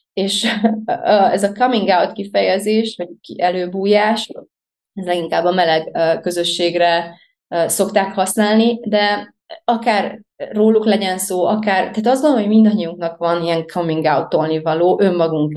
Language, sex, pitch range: Hungarian, female, 165-200 Hz